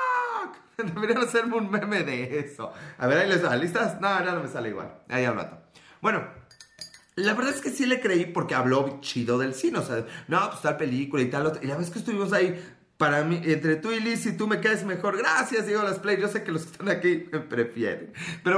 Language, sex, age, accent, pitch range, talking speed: Spanish, male, 30-49, Mexican, 130-200 Hz, 235 wpm